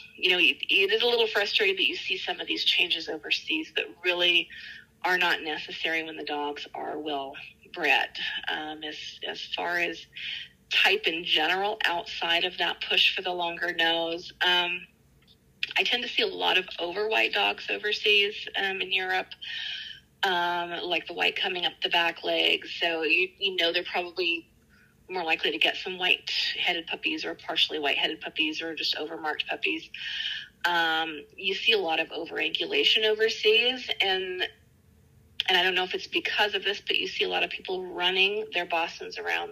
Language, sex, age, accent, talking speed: English, female, 30-49, American, 175 wpm